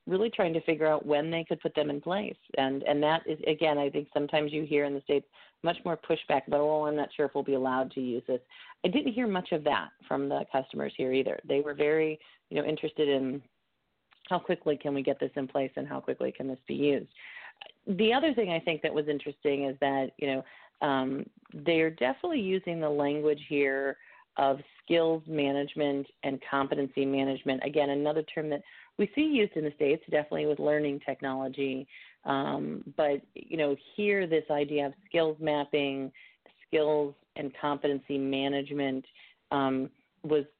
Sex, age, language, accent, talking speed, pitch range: female, 40-59, English, American, 190 wpm, 135-155 Hz